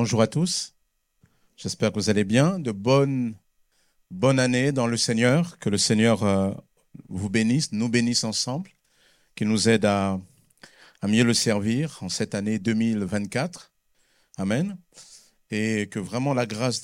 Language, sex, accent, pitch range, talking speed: French, male, French, 105-130 Hz, 150 wpm